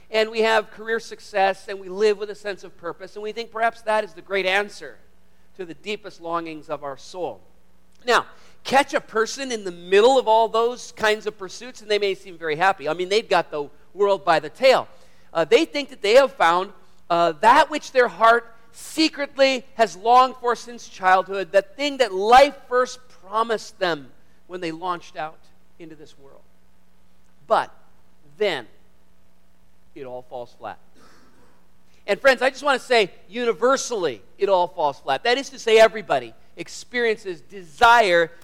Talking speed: 180 wpm